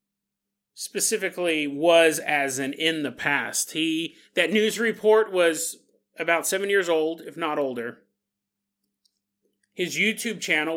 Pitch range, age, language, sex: 150-200 Hz, 30-49, English, male